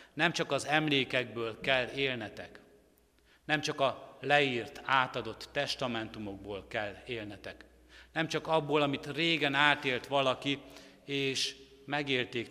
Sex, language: male, Hungarian